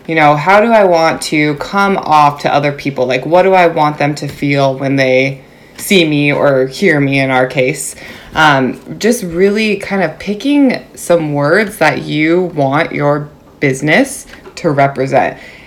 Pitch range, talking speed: 140-170 Hz, 170 wpm